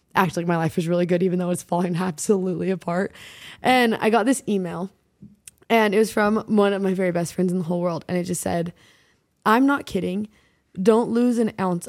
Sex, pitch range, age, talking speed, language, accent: female, 180-210 Hz, 20-39, 215 wpm, English, American